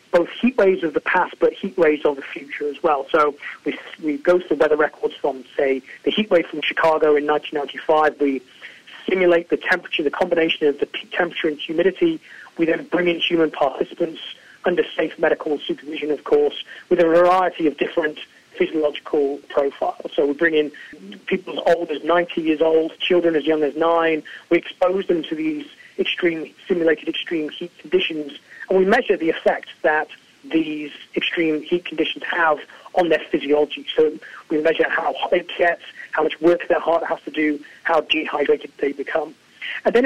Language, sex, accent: English, male, British